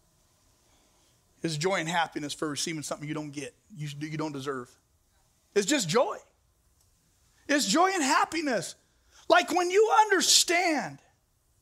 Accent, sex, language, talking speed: American, male, English, 125 wpm